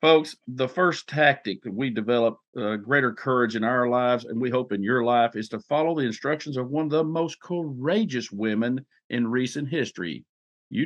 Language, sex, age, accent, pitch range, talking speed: English, male, 50-69, American, 120-155 Hz, 195 wpm